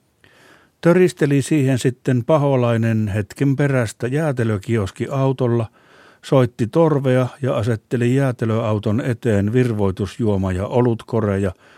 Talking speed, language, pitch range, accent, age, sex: 80 wpm, Finnish, 100-130 Hz, native, 60-79, male